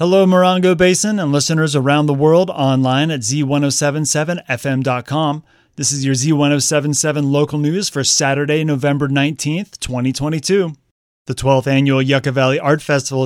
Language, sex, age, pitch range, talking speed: English, male, 30-49, 130-155 Hz, 130 wpm